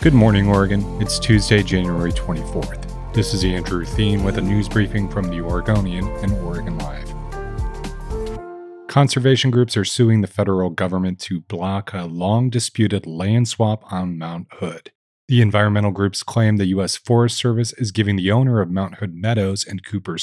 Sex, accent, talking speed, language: male, American, 165 wpm, English